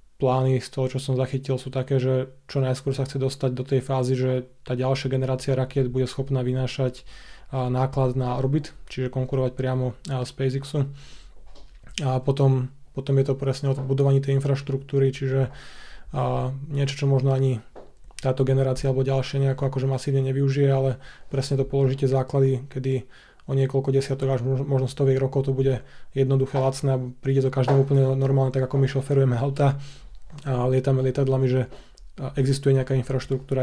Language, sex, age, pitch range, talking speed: Slovak, male, 20-39, 130-135 Hz, 165 wpm